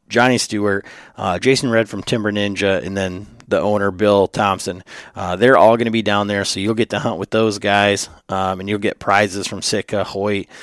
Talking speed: 215 wpm